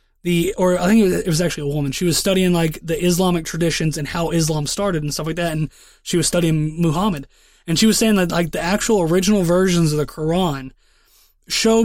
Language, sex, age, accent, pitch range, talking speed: English, male, 20-39, American, 165-205 Hz, 220 wpm